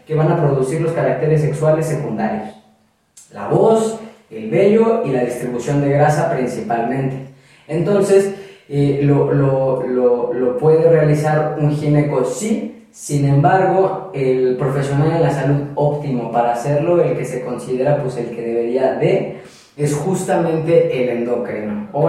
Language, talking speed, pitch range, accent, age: Spanish, 145 wpm, 140-180 Hz, Mexican, 30-49